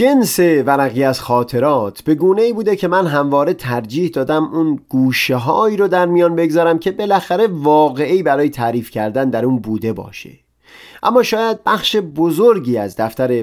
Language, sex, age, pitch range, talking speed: Persian, male, 30-49, 125-180 Hz, 160 wpm